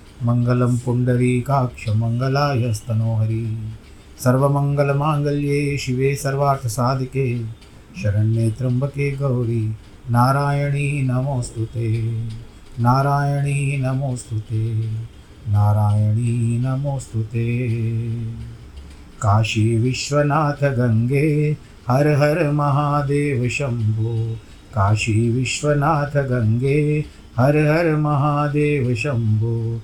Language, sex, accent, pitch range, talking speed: Hindi, male, native, 110-140 Hz, 60 wpm